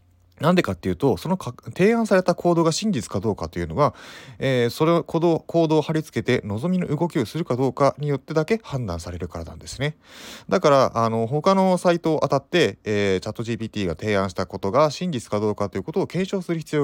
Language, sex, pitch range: Japanese, male, 95-150 Hz